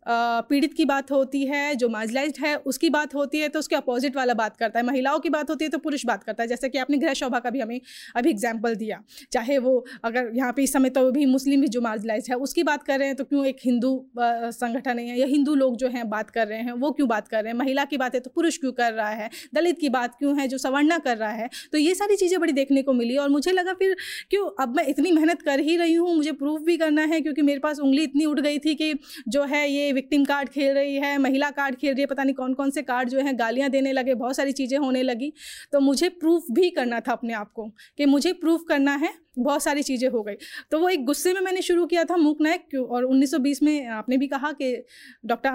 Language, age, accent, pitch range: Hindi, 30-49, native, 255-305 Hz